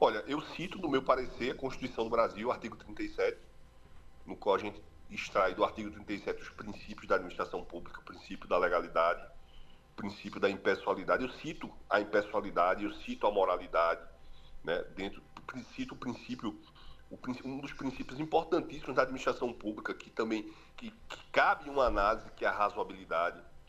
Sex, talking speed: male, 160 wpm